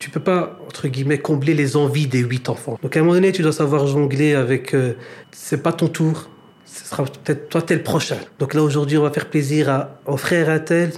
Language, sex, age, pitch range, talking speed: French, male, 40-59, 145-175 Hz, 255 wpm